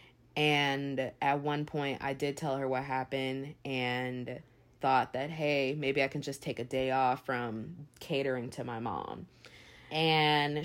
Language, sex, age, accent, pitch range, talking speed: English, female, 20-39, American, 130-155 Hz, 160 wpm